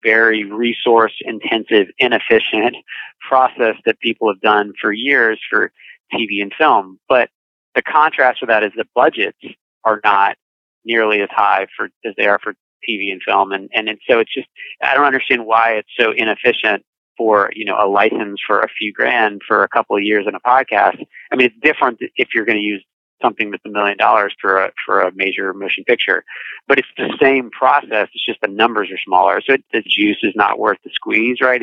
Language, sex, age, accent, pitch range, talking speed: English, male, 30-49, American, 100-120 Hz, 205 wpm